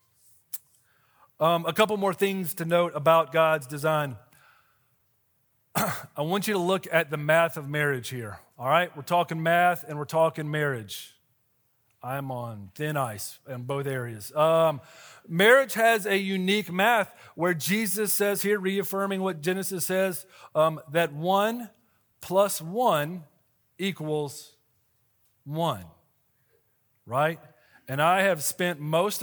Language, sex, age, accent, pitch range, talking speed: English, male, 40-59, American, 135-180 Hz, 130 wpm